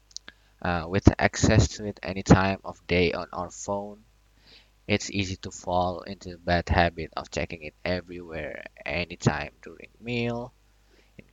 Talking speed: 150 wpm